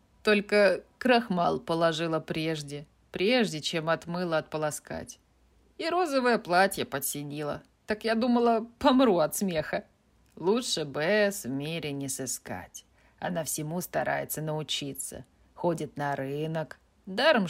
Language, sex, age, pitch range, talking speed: Russian, female, 20-39, 140-185 Hz, 110 wpm